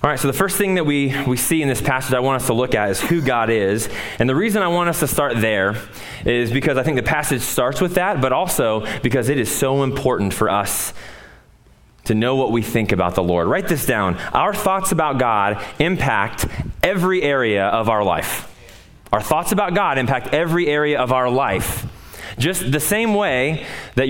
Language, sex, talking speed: English, male, 210 wpm